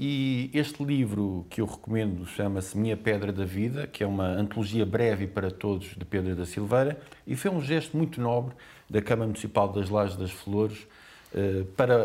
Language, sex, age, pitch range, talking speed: Portuguese, male, 50-69, 105-145 Hz, 180 wpm